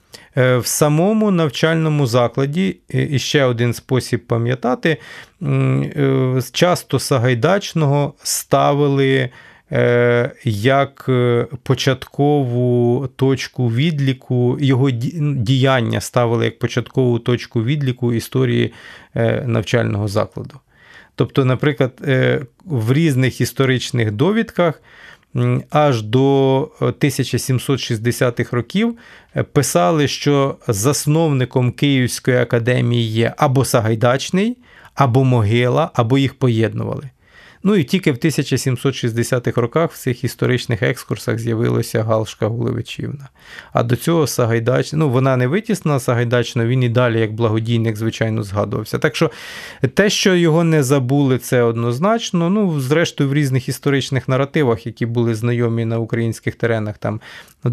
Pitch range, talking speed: 120-145 Hz, 105 wpm